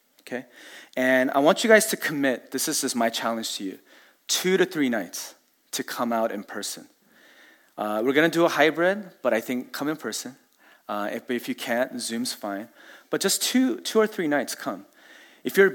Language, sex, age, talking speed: English, male, 30-49, 205 wpm